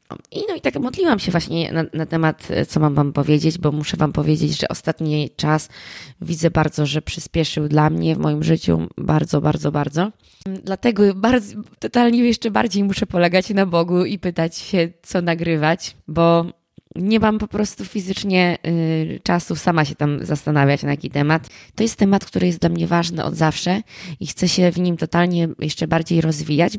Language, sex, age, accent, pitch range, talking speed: Polish, female, 20-39, native, 150-185 Hz, 175 wpm